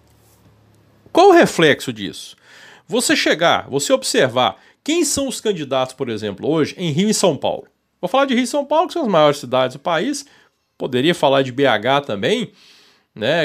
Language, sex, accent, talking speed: Portuguese, male, Brazilian, 180 wpm